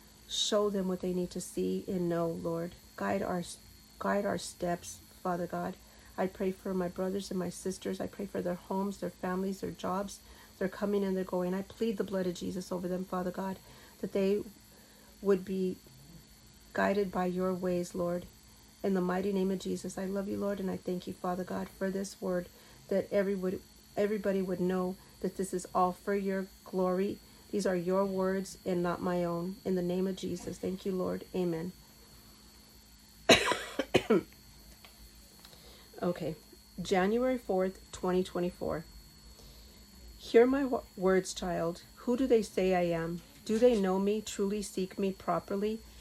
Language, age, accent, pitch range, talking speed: English, 40-59, American, 175-195 Hz, 170 wpm